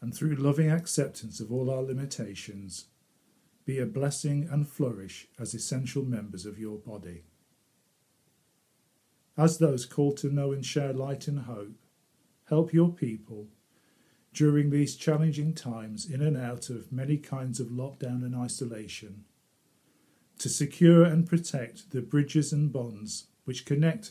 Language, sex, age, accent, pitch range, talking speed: English, male, 50-69, British, 115-145 Hz, 140 wpm